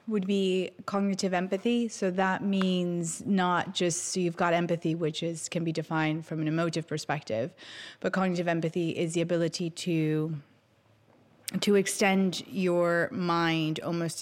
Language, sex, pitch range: English, female, 165-190 Hz